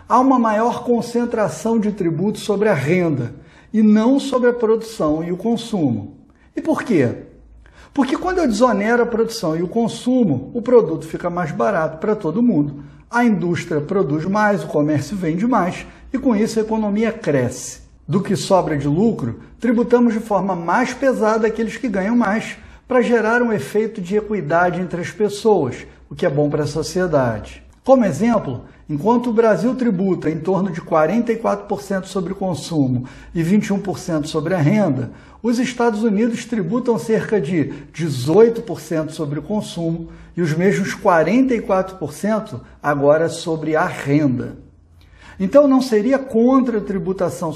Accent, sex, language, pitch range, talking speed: Brazilian, male, Portuguese, 165-230 Hz, 155 wpm